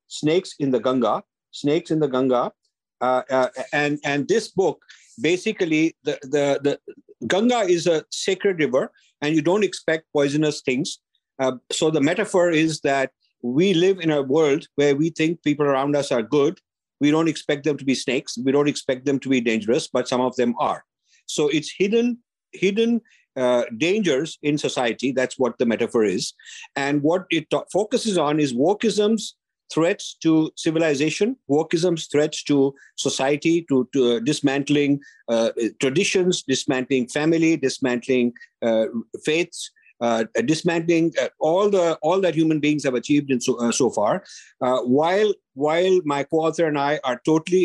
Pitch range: 135-170 Hz